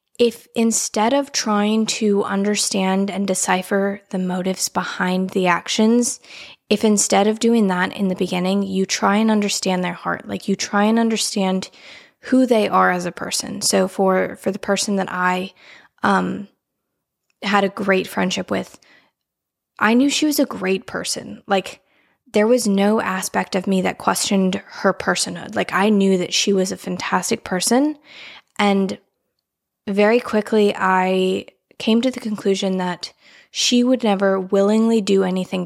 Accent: American